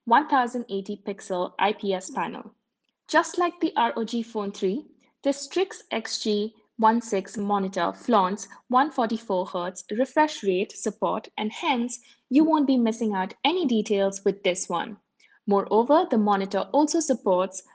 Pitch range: 195-280 Hz